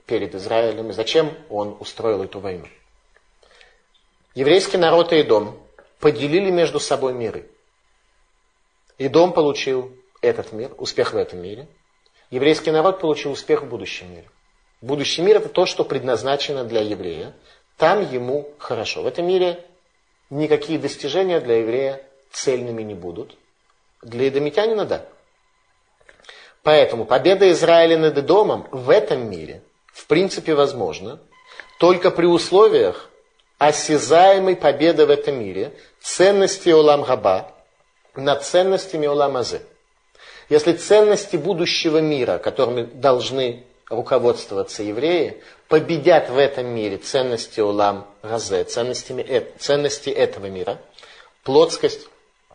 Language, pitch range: Russian, 135-210 Hz